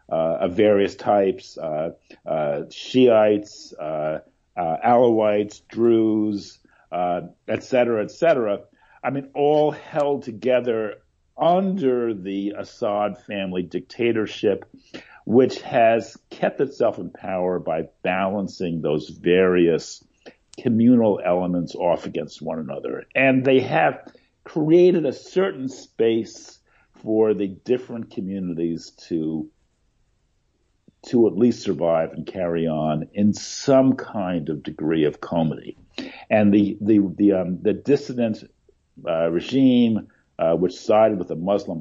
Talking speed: 120 wpm